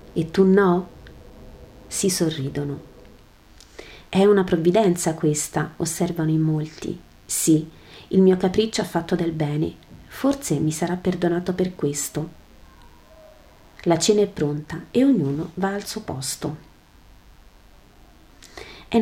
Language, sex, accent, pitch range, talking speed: Italian, female, native, 155-190 Hz, 115 wpm